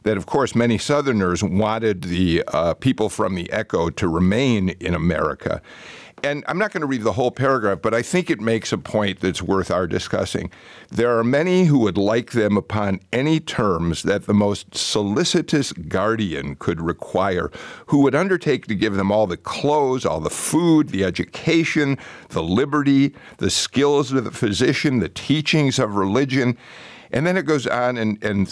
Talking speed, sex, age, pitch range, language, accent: 180 wpm, male, 50-69, 95-140 Hz, English, American